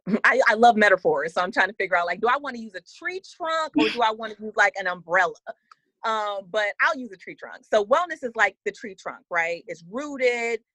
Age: 30-49